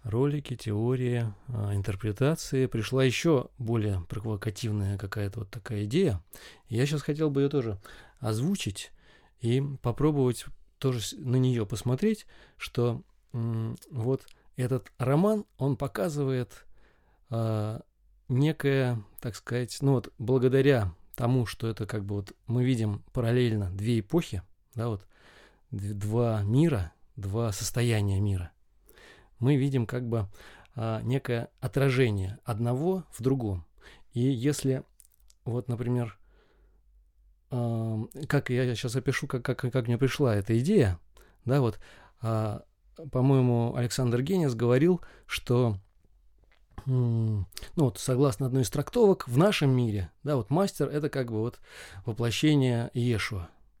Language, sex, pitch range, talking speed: Russian, male, 110-135 Hz, 120 wpm